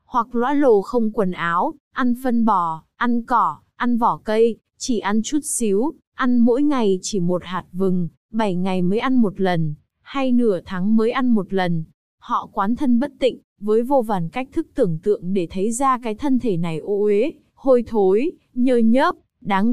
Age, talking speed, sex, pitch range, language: 20-39, 195 wpm, female, 190-255 Hz, Vietnamese